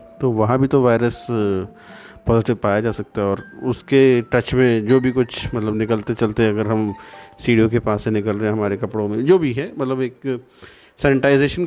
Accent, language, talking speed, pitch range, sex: native, Hindi, 195 wpm, 110-130 Hz, male